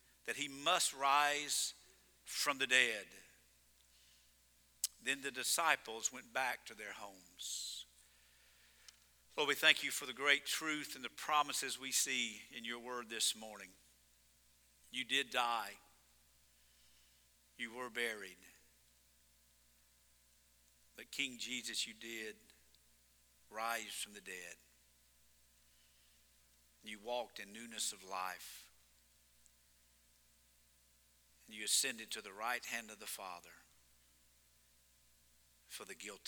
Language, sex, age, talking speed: English, male, 50-69, 110 wpm